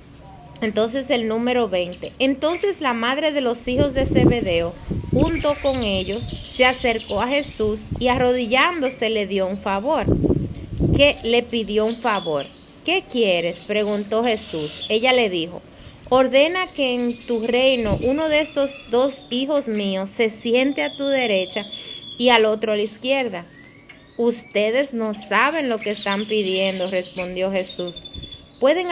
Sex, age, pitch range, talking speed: female, 30-49, 205-255 Hz, 145 wpm